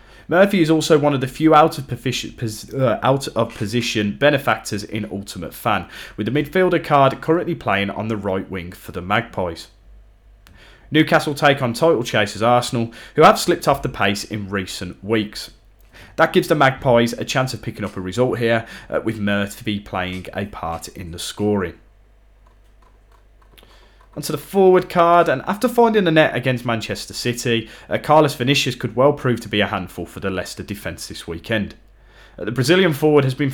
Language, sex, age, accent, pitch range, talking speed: English, male, 30-49, British, 100-140 Hz, 170 wpm